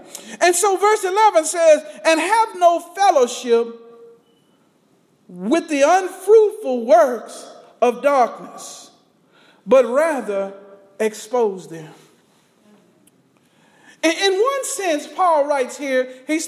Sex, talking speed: male, 95 wpm